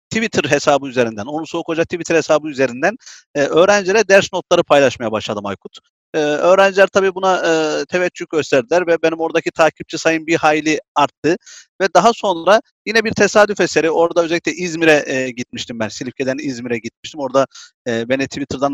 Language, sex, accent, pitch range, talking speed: Turkish, male, native, 140-195 Hz, 165 wpm